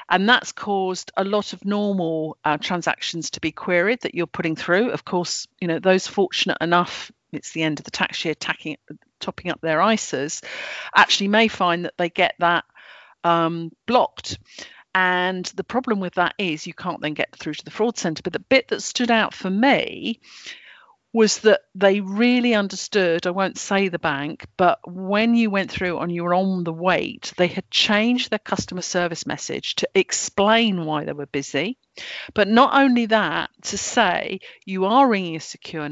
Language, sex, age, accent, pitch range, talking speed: English, female, 50-69, British, 175-220 Hz, 185 wpm